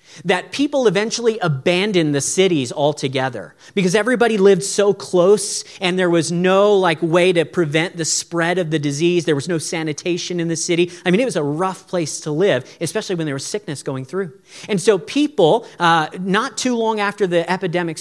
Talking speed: 195 wpm